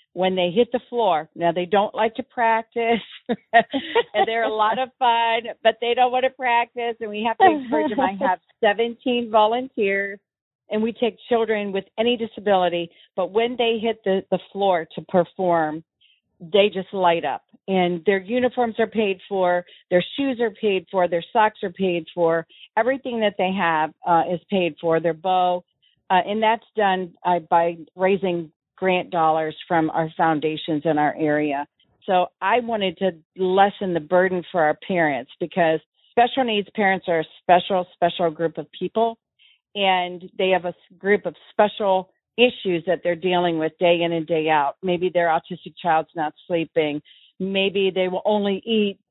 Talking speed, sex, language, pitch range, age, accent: 175 wpm, female, English, 175-220 Hz, 50-69, American